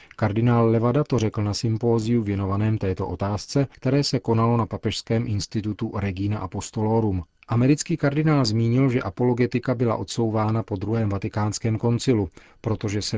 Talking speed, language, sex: 135 wpm, Czech, male